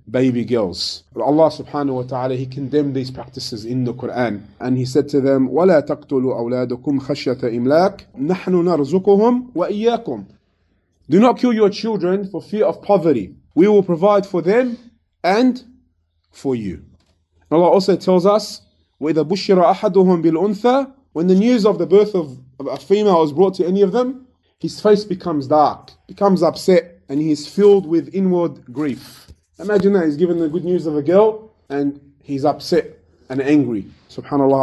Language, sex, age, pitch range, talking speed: English, male, 30-49, 130-190 Hz, 160 wpm